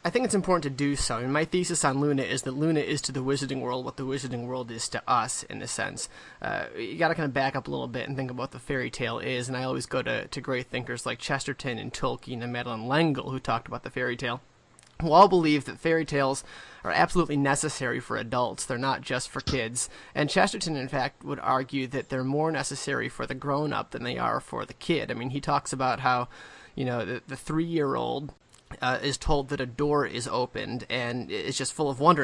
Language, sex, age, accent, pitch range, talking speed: English, male, 30-49, American, 130-150 Hz, 245 wpm